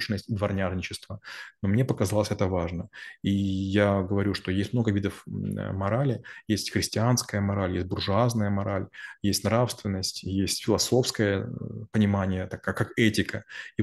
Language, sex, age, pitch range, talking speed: Russian, male, 20-39, 100-115 Hz, 135 wpm